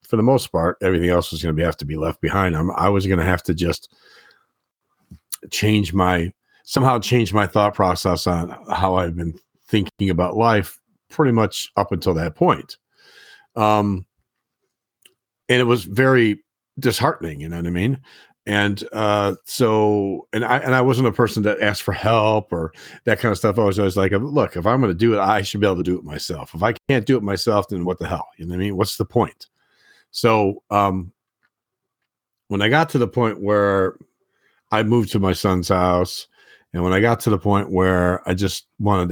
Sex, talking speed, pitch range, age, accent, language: male, 205 wpm, 90-115 Hz, 40-59, American, English